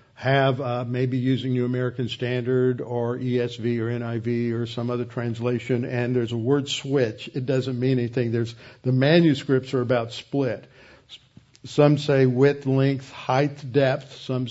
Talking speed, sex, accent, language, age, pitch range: 155 wpm, male, American, English, 60-79, 120-140 Hz